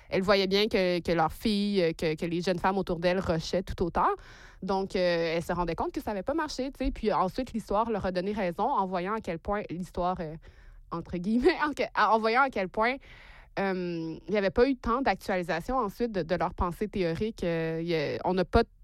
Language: French